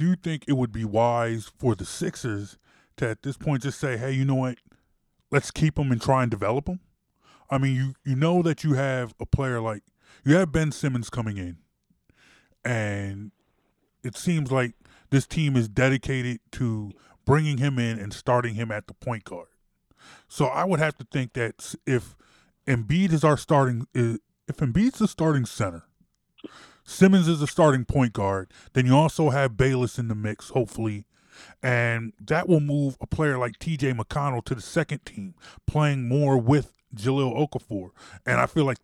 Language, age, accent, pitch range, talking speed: English, 20-39, American, 115-150 Hz, 180 wpm